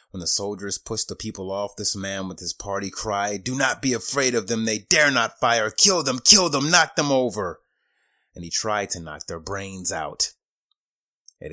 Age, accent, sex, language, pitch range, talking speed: 30-49, American, male, English, 90-110 Hz, 205 wpm